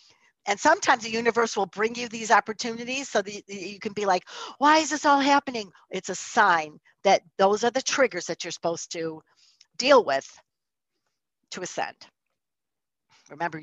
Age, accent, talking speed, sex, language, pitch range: 50-69, American, 165 wpm, female, English, 170-245 Hz